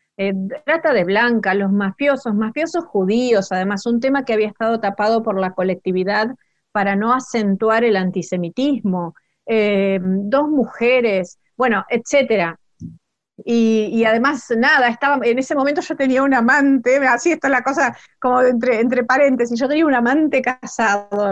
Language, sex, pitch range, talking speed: Spanish, female, 210-270 Hz, 145 wpm